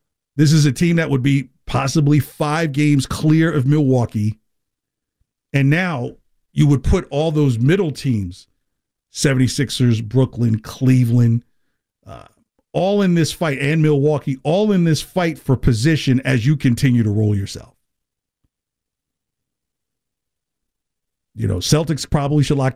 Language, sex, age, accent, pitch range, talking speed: English, male, 50-69, American, 120-150 Hz, 130 wpm